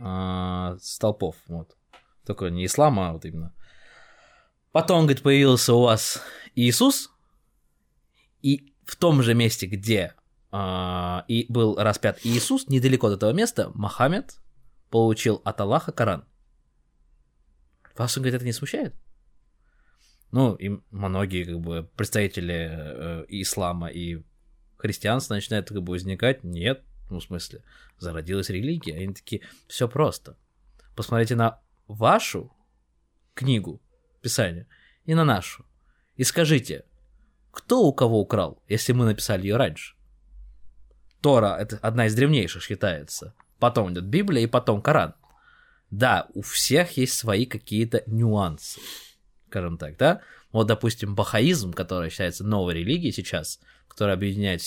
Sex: male